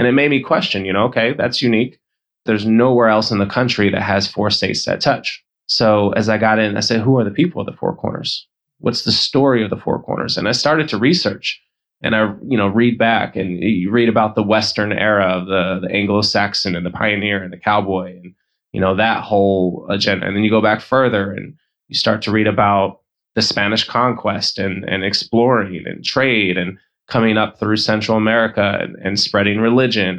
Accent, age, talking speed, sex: American, 20-39, 215 wpm, male